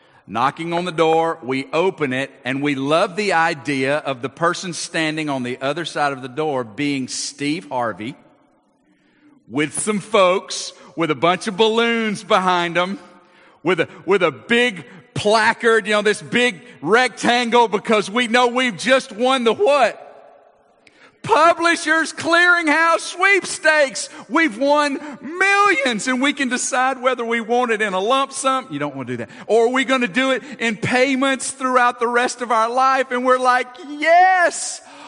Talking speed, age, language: 170 wpm, 50-69, English